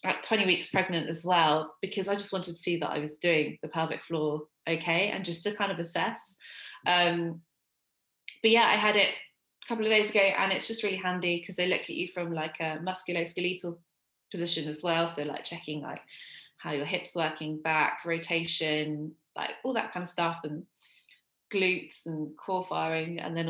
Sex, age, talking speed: female, 20-39, 195 wpm